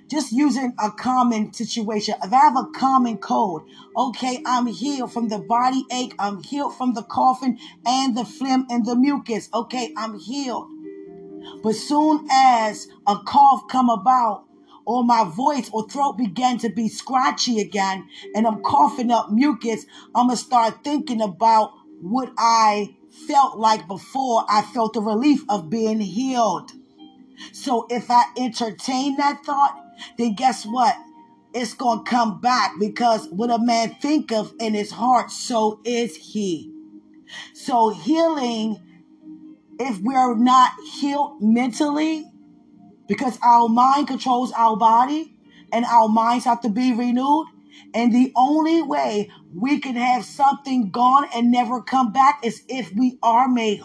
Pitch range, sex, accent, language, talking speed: 220-265 Hz, female, American, English, 150 wpm